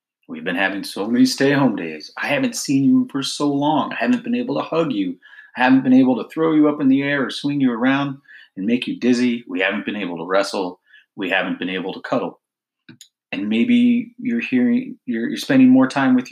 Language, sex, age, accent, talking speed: English, male, 30-49, American, 230 wpm